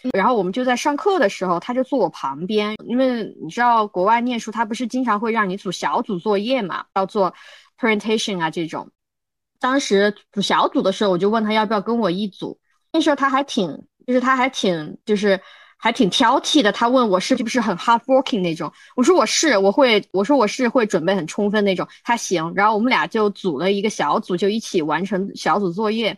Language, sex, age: Chinese, female, 20-39